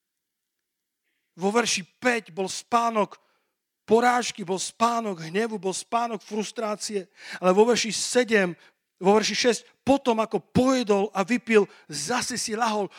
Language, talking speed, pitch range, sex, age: Slovak, 125 wpm, 165-210 Hz, male, 40-59